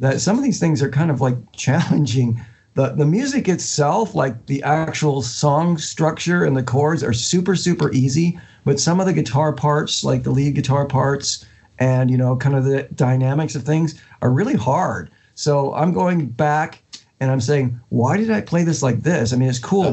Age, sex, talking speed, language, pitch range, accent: 50-69, male, 200 wpm, English, 130-160 Hz, American